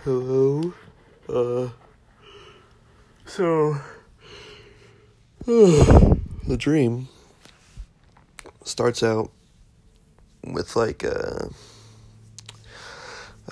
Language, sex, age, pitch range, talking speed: English, male, 30-49, 90-115 Hz, 50 wpm